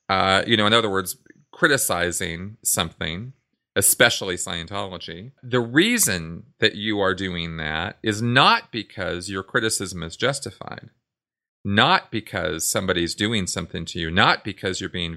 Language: English